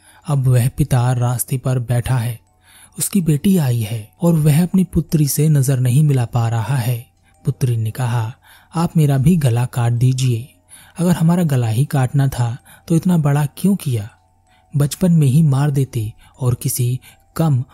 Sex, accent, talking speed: male, native, 170 wpm